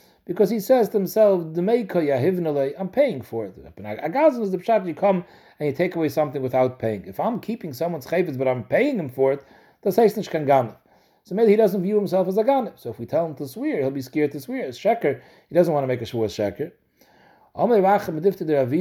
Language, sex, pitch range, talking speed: English, male, 145-205 Hz, 190 wpm